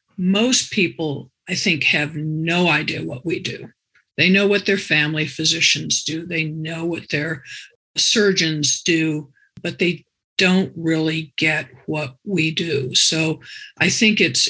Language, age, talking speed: English, 50-69, 145 wpm